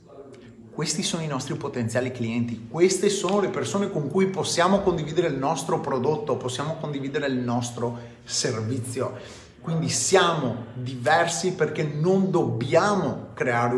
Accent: native